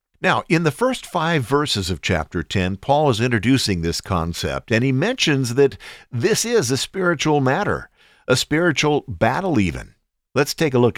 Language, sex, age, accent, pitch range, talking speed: English, male, 50-69, American, 100-140 Hz, 170 wpm